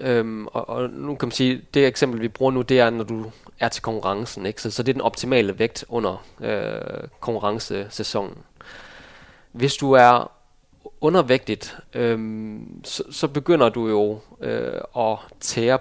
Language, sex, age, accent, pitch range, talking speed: Danish, male, 20-39, native, 110-135 Hz, 160 wpm